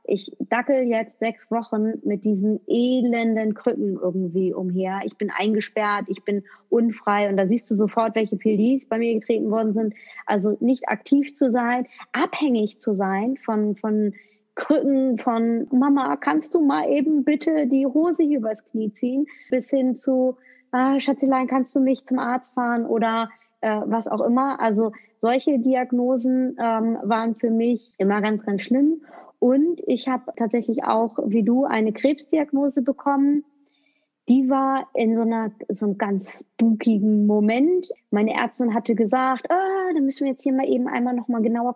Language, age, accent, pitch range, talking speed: German, 30-49, German, 220-275 Hz, 165 wpm